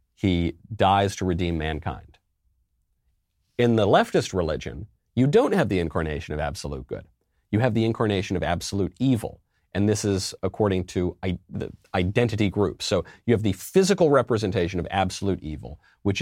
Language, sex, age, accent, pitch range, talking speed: English, male, 40-59, American, 90-110 Hz, 160 wpm